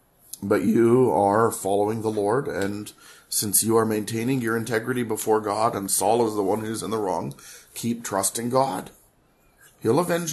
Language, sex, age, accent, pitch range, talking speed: English, male, 40-59, American, 100-115 Hz, 170 wpm